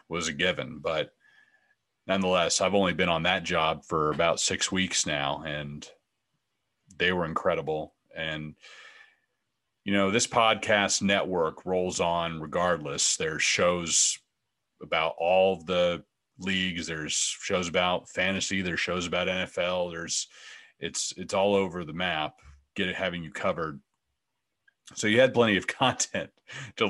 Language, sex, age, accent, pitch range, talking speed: English, male, 40-59, American, 85-95 Hz, 140 wpm